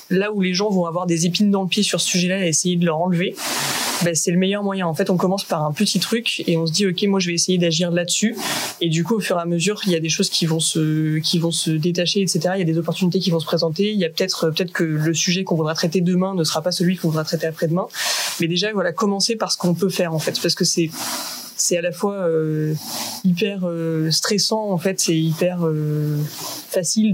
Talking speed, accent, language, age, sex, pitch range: 270 wpm, French, French, 20-39, female, 160-185 Hz